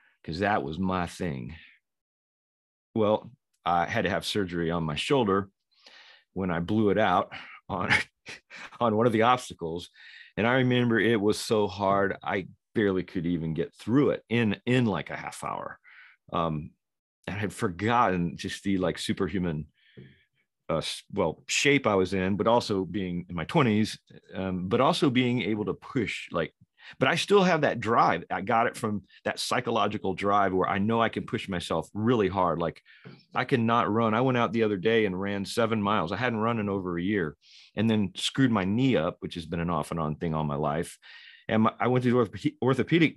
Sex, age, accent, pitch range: male, 40-59, American, 90-120 Hz